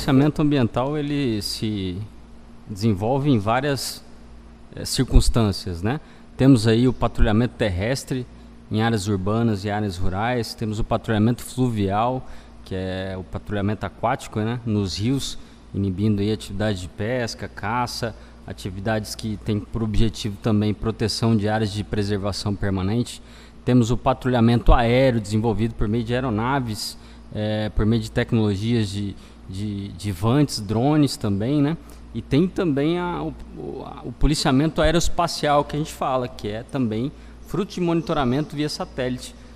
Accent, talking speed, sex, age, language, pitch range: Brazilian, 135 wpm, male, 20-39, Portuguese, 105-135 Hz